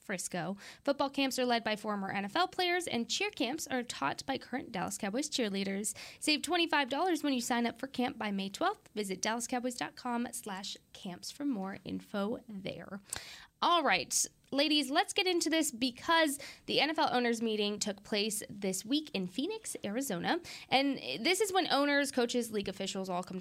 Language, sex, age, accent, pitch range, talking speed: English, female, 10-29, American, 195-270 Hz, 170 wpm